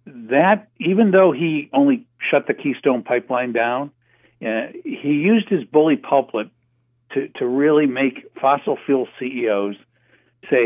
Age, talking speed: 60-79, 135 wpm